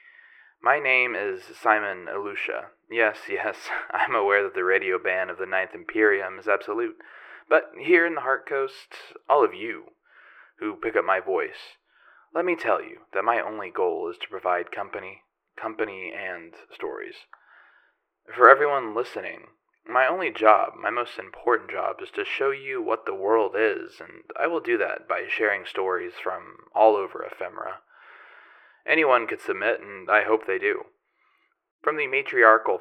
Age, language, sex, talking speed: 20-39, English, male, 165 wpm